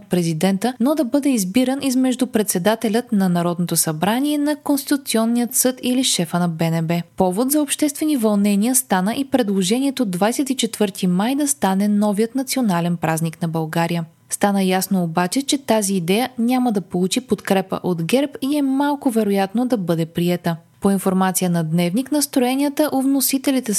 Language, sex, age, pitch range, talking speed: Bulgarian, female, 20-39, 185-255 Hz, 145 wpm